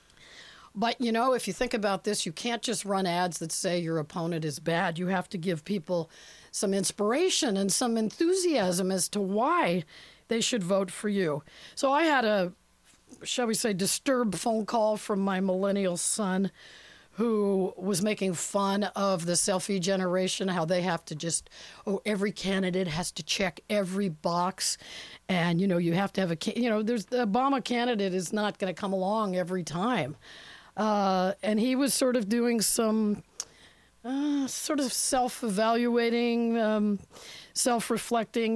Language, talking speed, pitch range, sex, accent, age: English, 170 wpm, 185-225 Hz, female, American, 50-69